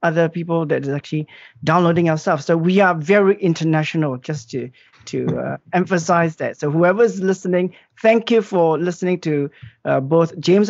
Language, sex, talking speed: English, male, 170 wpm